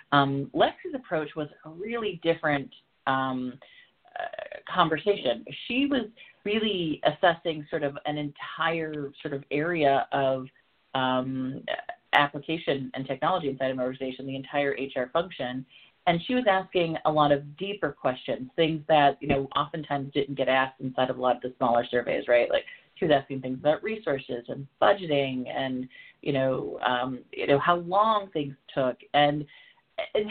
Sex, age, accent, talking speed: female, 30-49, American, 160 wpm